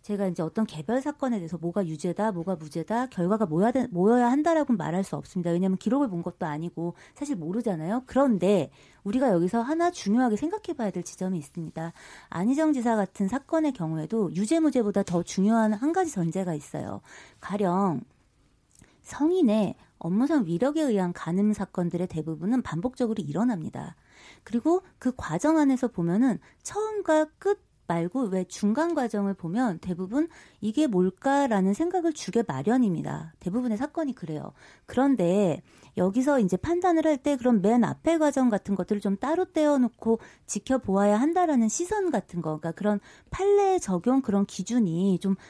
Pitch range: 185-275 Hz